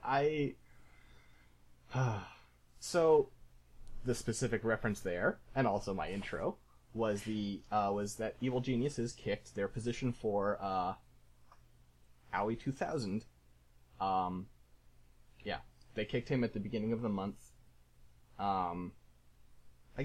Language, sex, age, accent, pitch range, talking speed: English, male, 30-49, American, 75-115 Hz, 110 wpm